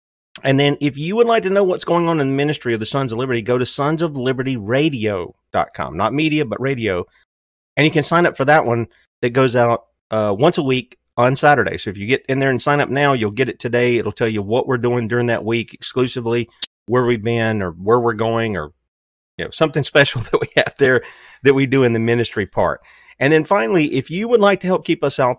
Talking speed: 240 wpm